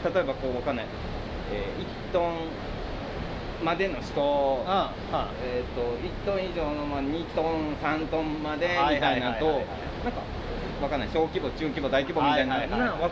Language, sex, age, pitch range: Japanese, male, 20-39, 130-190 Hz